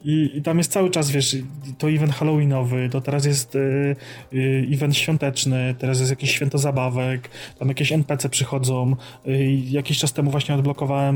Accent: native